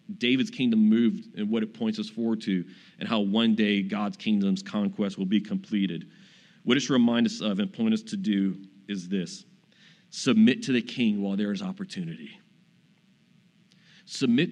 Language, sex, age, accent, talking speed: English, male, 40-59, American, 175 wpm